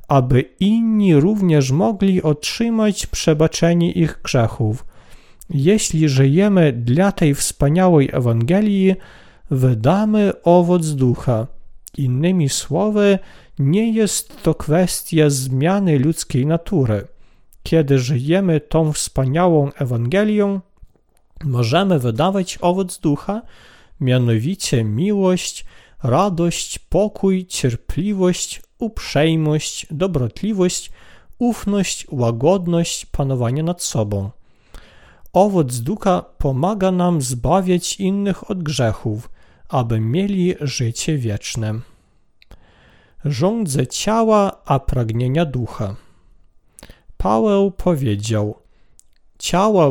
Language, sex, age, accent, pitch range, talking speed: Polish, male, 40-59, native, 130-190 Hz, 80 wpm